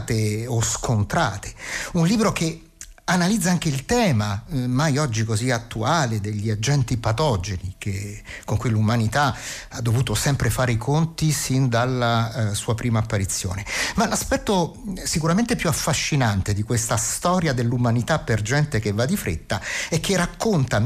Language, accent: Italian, native